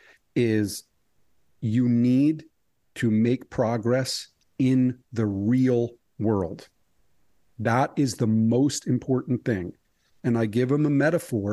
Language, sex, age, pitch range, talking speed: English, male, 50-69, 110-135 Hz, 115 wpm